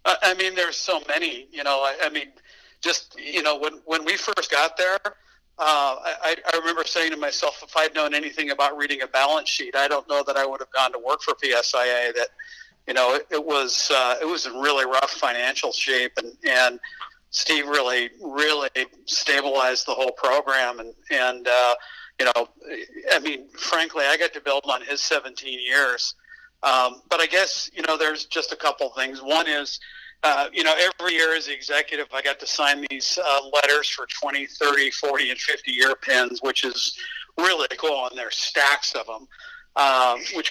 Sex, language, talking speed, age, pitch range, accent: male, English, 195 wpm, 50-69, 135-160 Hz, American